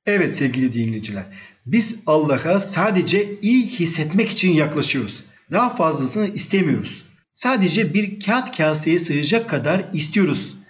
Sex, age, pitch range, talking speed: male, 50-69, 155-205 Hz, 110 wpm